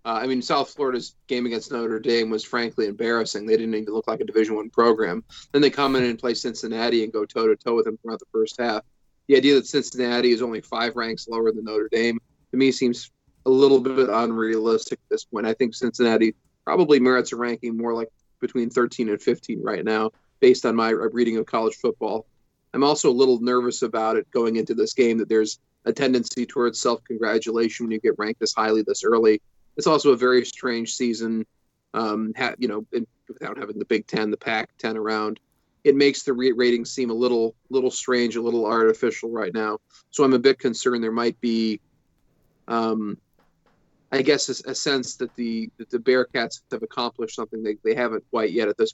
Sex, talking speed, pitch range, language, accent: male, 205 wpm, 110-130 Hz, English, American